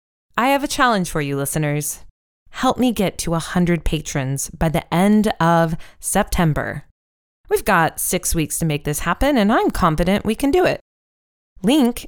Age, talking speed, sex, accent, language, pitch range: 20-39, 170 wpm, female, American, English, 150-225 Hz